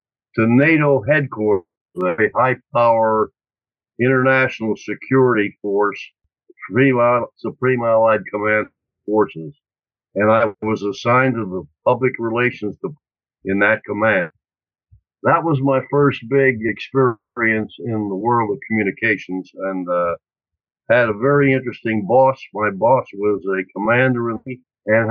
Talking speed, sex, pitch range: 115 wpm, male, 105-130 Hz